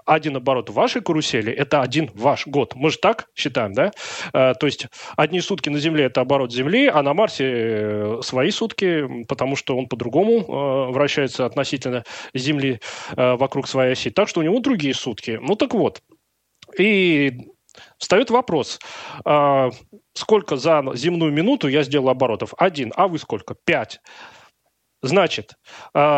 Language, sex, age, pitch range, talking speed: Russian, male, 30-49, 130-170 Hz, 140 wpm